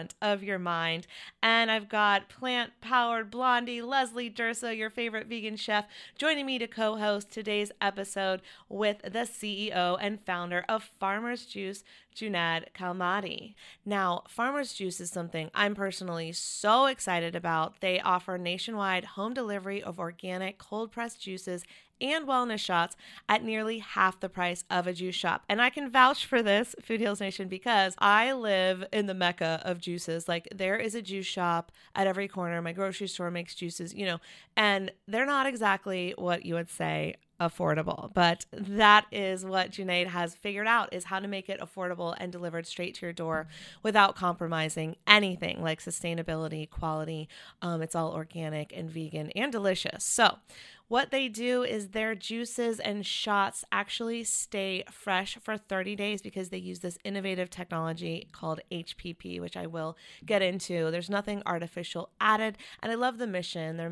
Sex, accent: female, American